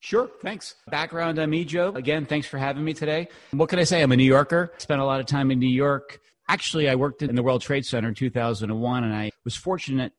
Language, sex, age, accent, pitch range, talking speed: English, male, 30-49, American, 110-130 Hz, 245 wpm